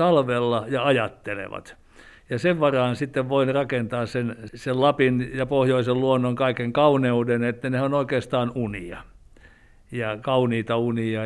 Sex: male